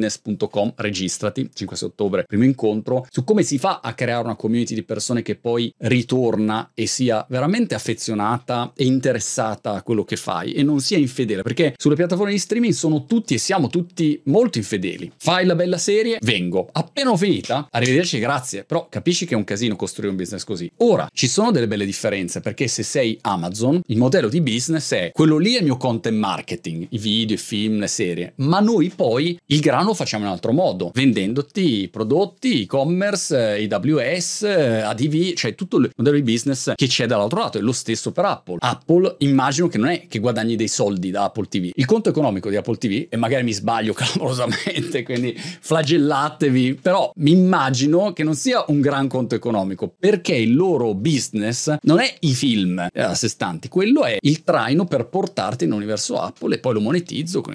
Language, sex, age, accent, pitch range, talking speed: Italian, male, 30-49, native, 110-165 Hz, 195 wpm